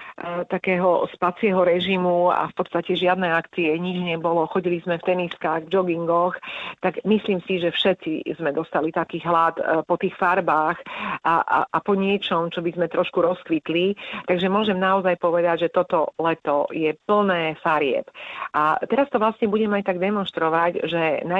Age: 40-59